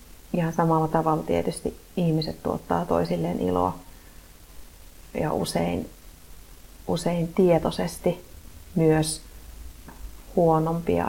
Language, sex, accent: Finnish, female, native